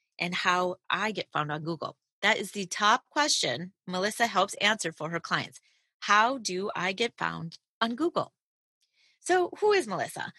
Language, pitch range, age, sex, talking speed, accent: English, 180-260 Hz, 30-49, female, 170 wpm, American